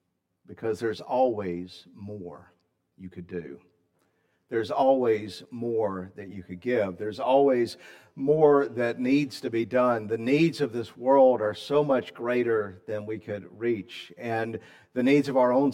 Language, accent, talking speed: English, American, 155 wpm